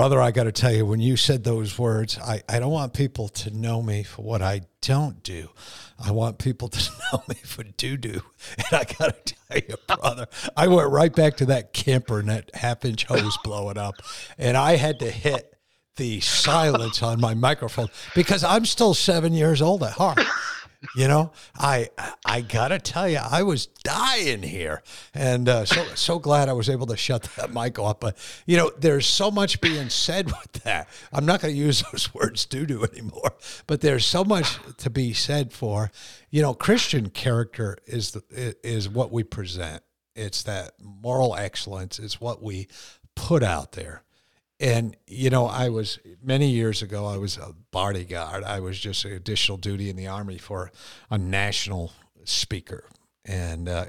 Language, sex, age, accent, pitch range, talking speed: English, male, 60-79, American, 100-130 Hz, 190 wpm